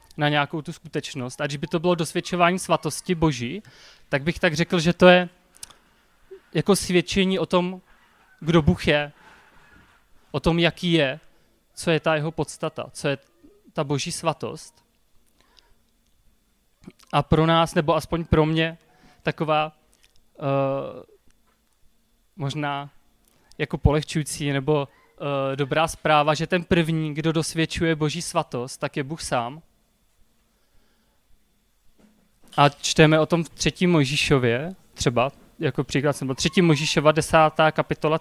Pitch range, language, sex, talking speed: 145-170 Hz, Czech, male, 125 wpm